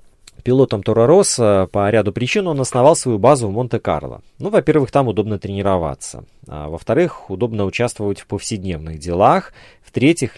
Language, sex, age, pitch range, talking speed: Russian, male, 30-49, 90-125 Hz, 140 wpm